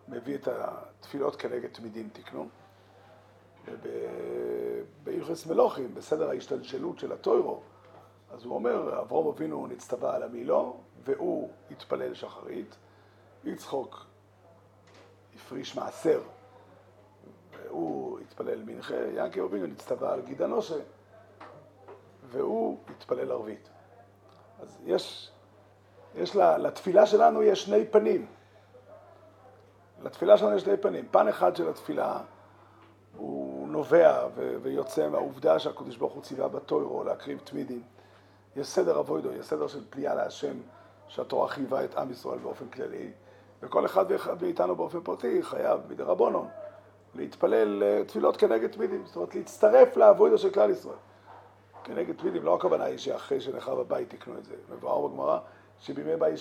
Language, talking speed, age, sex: Hebrew, 125 wpm, 50-69, male